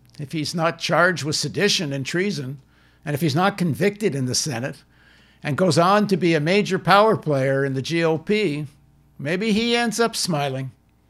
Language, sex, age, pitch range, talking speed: English, male, 60-79, 135-185 Hz, 180 wpm